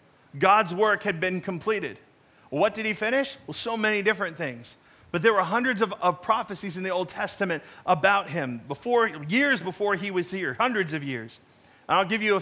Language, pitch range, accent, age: English, 180-215 Hz, American, 40-59